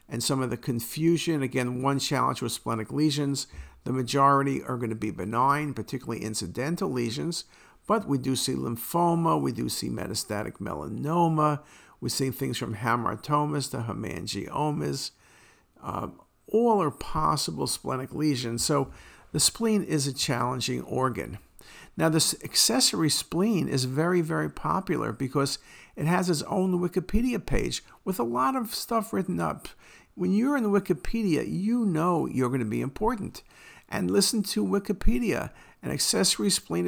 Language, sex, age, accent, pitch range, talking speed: English, male, 50-69, American, 125-175 Hz, 145 wpm